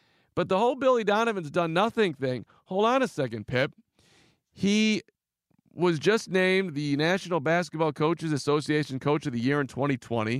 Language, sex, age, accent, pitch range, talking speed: English, male, 40-59, American, 130-175 Hz, 160 wpm